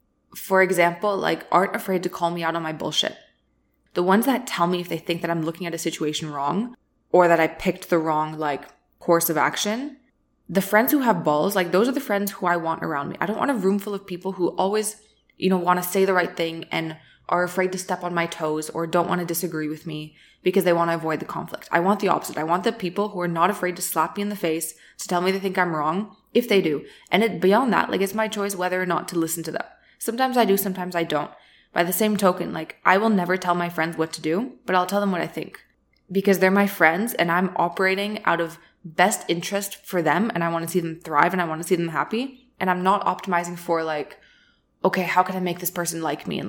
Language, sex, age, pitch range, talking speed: English, female, 20-39, 165-195 Hz, 265 wpm